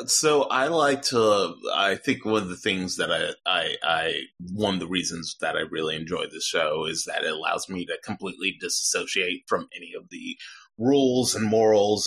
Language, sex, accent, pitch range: English, male, American, 95-135 Hz